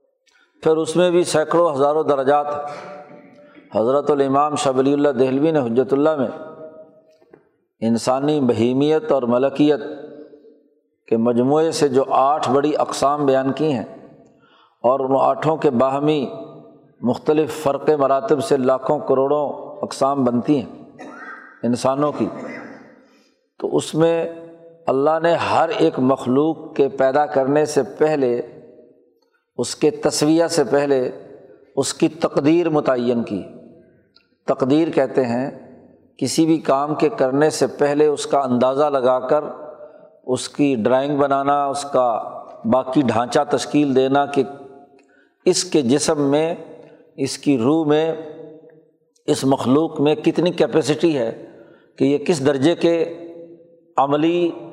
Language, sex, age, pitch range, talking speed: Urdu, male, 50-69, 135-160 Hz, 125 wpm